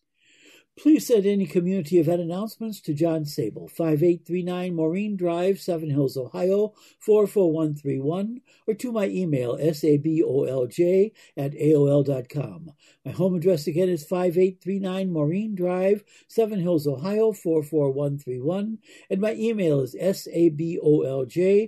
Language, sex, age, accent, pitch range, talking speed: English, male, 60-79, American, 150-200 Hz, 110 wpm